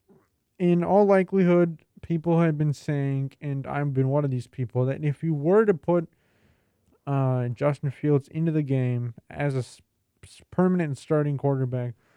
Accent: American